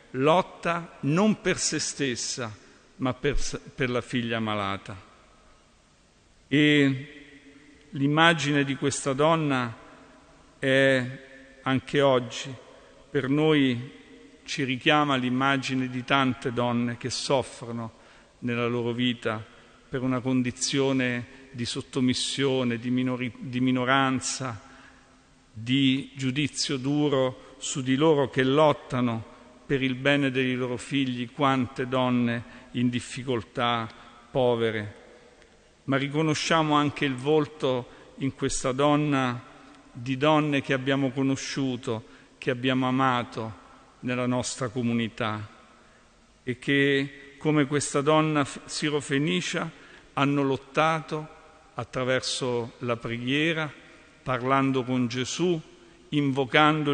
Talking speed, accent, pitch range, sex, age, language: 100 wpm, native, 125-145 Hz, male, 50-69, Italian